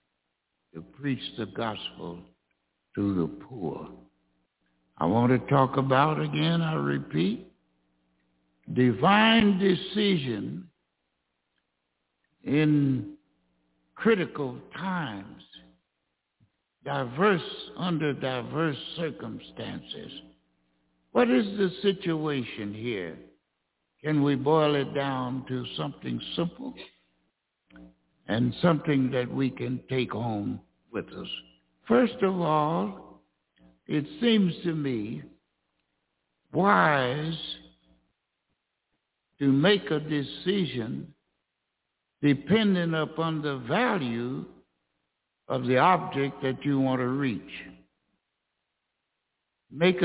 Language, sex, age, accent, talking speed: English, male, 60-79, American, 85 wpm